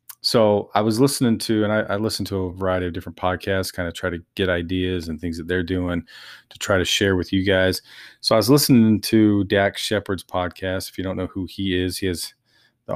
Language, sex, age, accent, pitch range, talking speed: English, male, 30-49, American, 90-105 Hz, 235 wpm